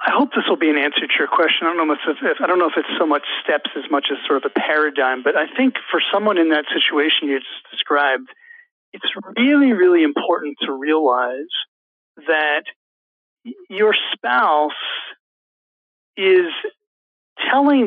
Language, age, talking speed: English, 40-59, 175 wpm